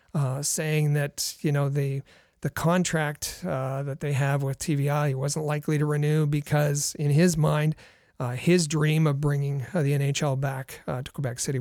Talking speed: 180 wpm